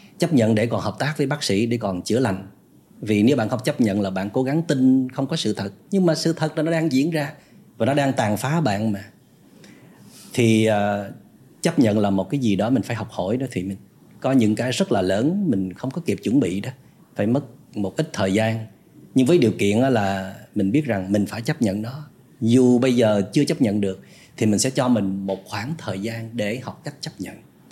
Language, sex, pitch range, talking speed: Vietnamese, male, 100-135 Hz, 245 wpm